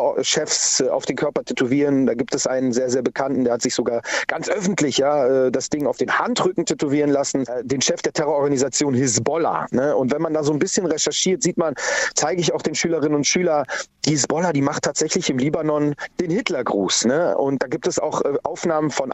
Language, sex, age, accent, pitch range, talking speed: German, male, 40-59, German, 145-165 Hz, 205 wpm